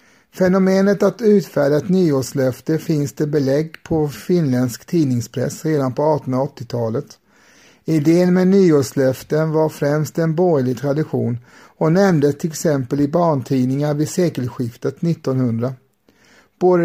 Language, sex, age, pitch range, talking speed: Swedish, male, 50-69, 135-175 Hz, 115 wpm